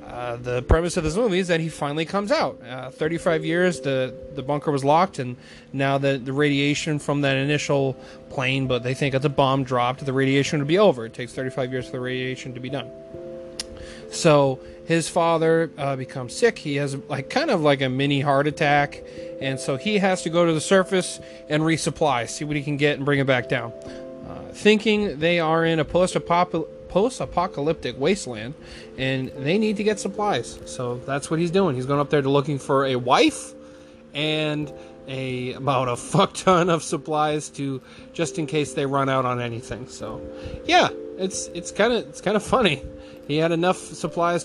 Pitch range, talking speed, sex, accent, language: 130-170 Hz, 200 wpm, male, American, English